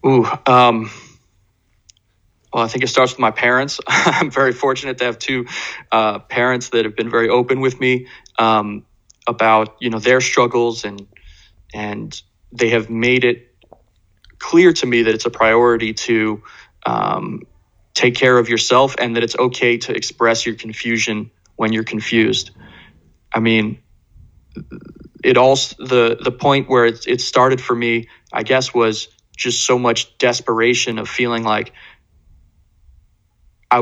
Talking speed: 150 wpm